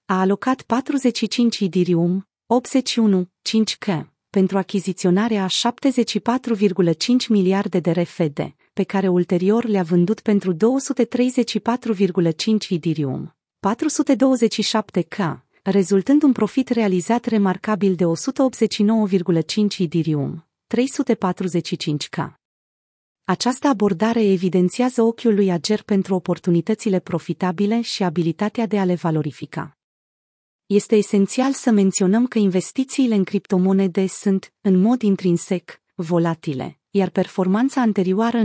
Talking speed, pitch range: 95 wpm, 180-225 Hz